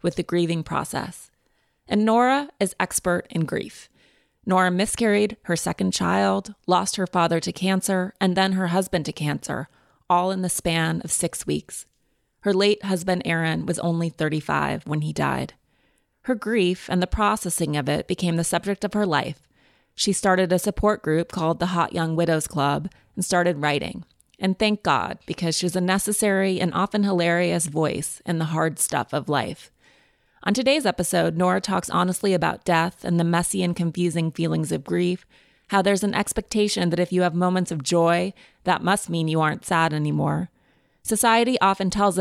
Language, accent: English, American